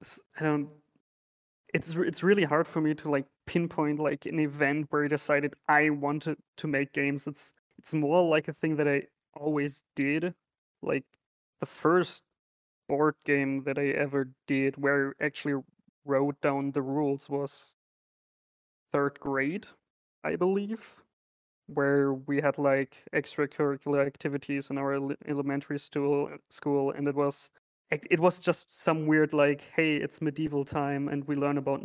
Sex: male